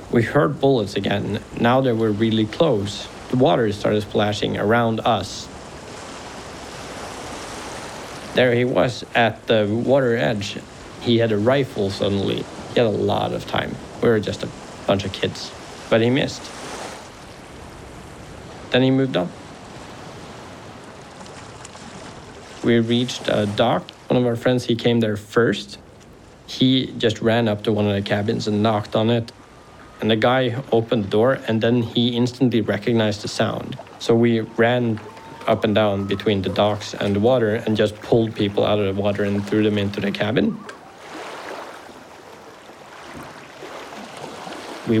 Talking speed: 150 wpm